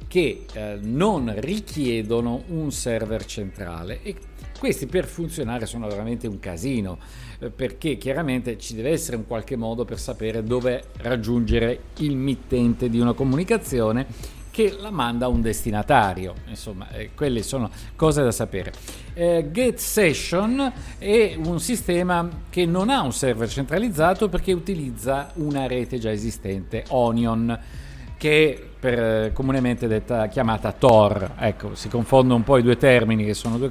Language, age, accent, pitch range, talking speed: Italian, 50-69, native, 110-150 Hz, 145 wpm